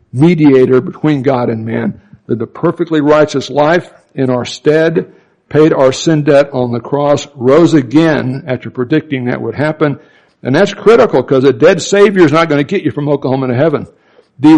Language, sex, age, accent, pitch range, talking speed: English, male, 60-79, American, 130-155 Hz, 185 wpm